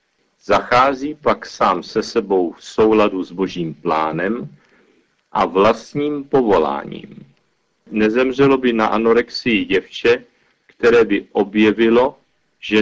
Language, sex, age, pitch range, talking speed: Czech, male, 50-69, 105-135 Hz, 105 wpm